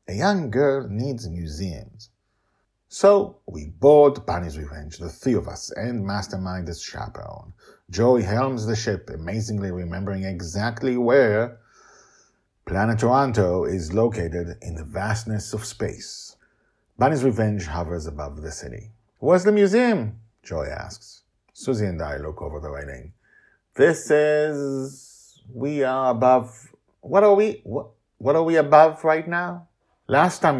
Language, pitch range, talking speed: English, 95-145 Hz, 135 wpm